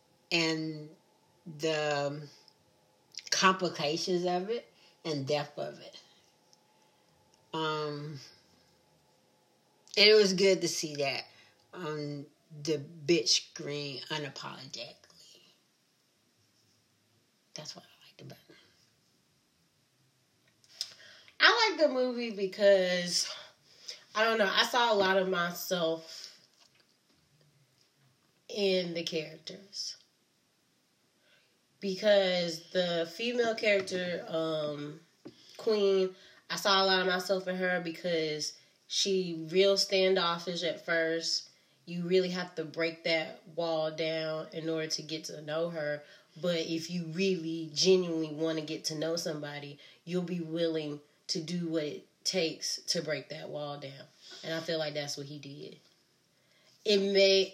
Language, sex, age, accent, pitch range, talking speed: English, female, 40-59, American, 155-190 Hz, 120 wpm